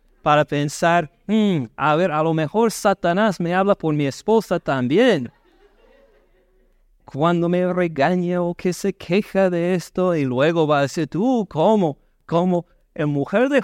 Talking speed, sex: 155 wpm, male